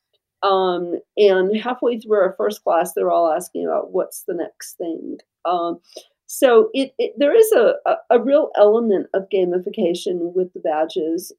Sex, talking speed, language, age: female, 165 wpm, English, 50-69